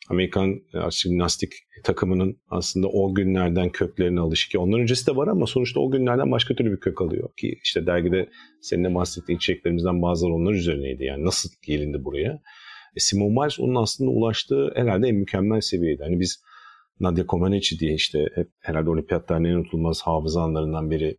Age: 40-59